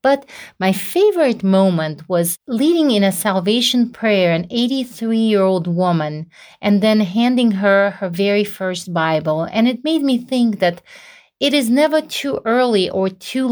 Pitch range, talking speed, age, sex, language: 170-225 Hz, 150 wpm, 40-59, female, English